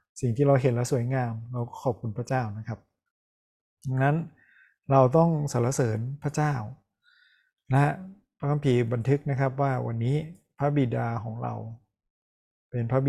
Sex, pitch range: male, 115-140 Hz